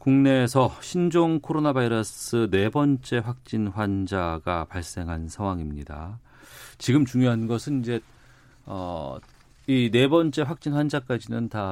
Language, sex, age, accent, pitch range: Korean, male, 40-59, native, 95-125 Hz